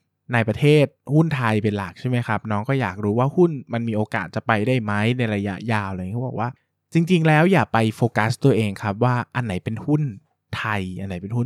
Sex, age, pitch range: male, 20-39, 110-150 Hz